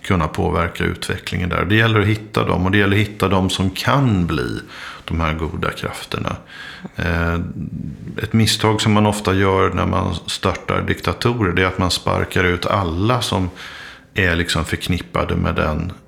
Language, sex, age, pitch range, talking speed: Swedish, male, 50-69, 90-105 Hz, 160 wpm